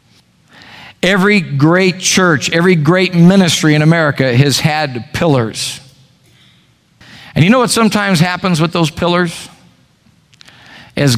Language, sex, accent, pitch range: English, male, American, 135-175 Hz